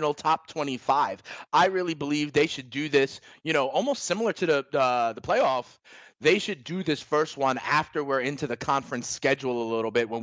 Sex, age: male, 30-49